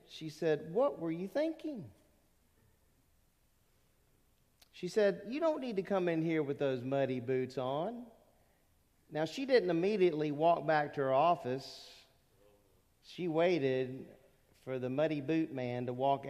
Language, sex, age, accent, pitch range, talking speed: English, male, 40-59, American, 120-155 Hz, 140 wpm